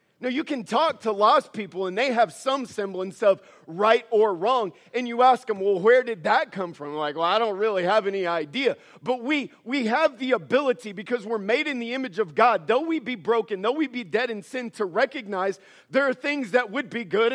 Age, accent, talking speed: 40-59, American, 235 wpm